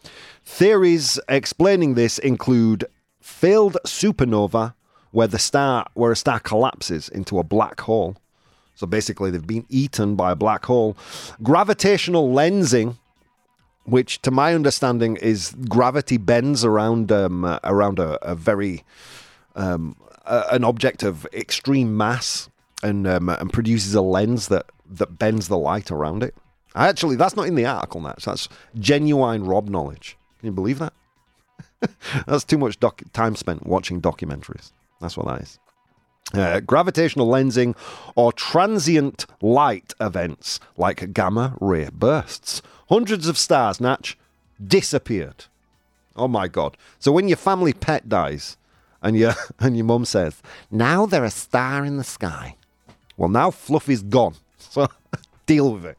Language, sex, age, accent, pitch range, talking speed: English, male, 30-49, British, 100-135 Hz, 140 wpm